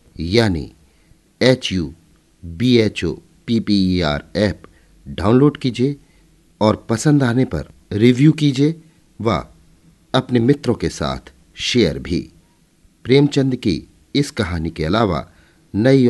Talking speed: 100 wpm